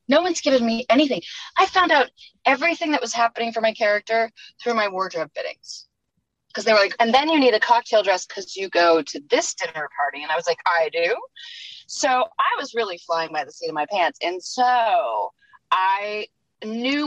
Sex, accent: female, American